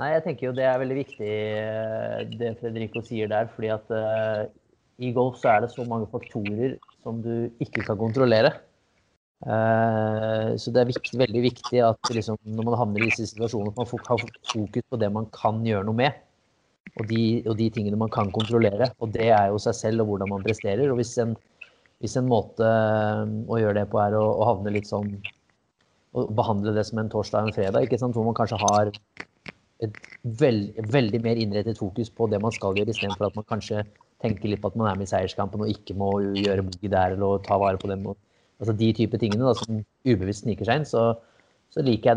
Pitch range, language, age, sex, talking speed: 105-115 Hz, English, 20-39, male, 205 wpm